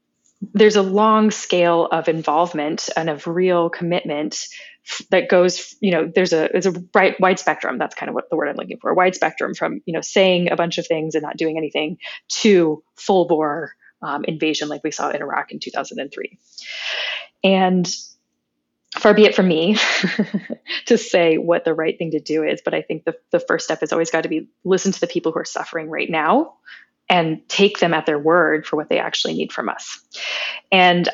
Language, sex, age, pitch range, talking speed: English, female, 20-39, 160-200 Hz, 205 wpm